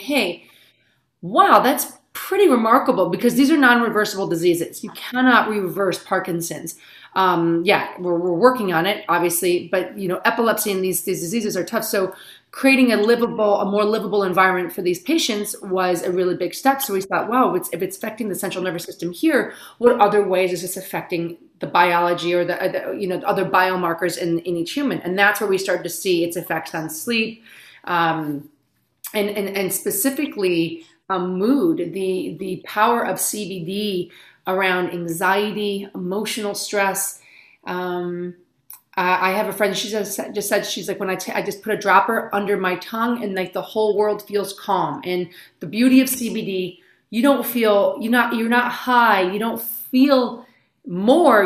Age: 30-49